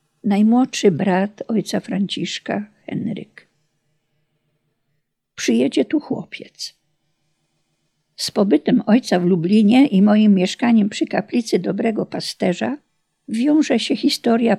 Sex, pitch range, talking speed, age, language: female, 190-235 Hz, 95 wpm, 50-69, Polish